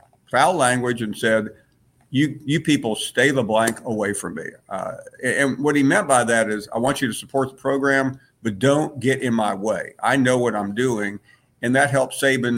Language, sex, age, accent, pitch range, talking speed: English, male, 50-69, American, 110-140 Hz, 210 wpm